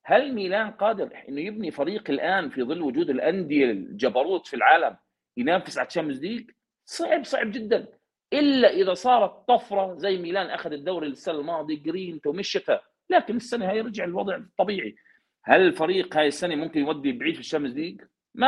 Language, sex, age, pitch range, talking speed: Arabic, male, 40-59, 170-245 Hz, 160 wpm